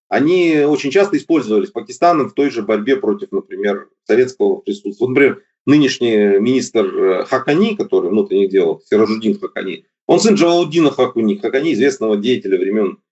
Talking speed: 135 wpm